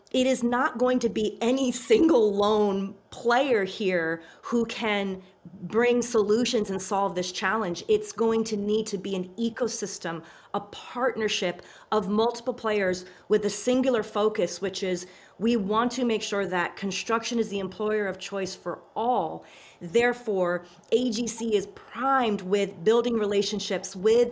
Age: 30-49